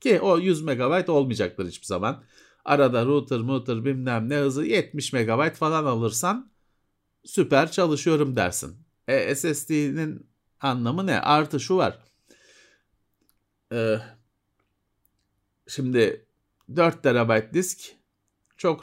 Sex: male